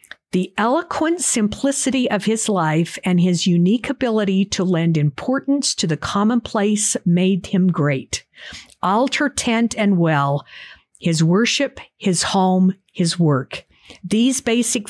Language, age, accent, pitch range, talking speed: English, 50-69, American, 180-240 Hz, 125 wpm